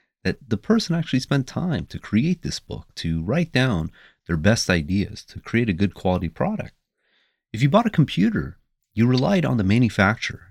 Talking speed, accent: 185 wpm, American